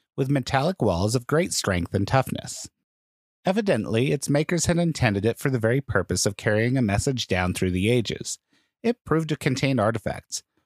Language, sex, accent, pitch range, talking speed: English, male, American, 110-165 Hz, 175 wpm